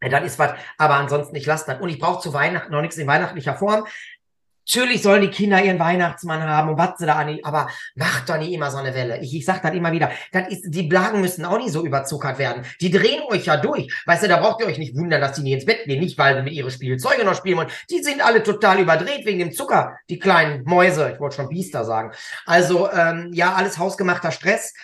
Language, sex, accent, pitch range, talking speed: German, male, German, 145-185 Hz, 245 wpm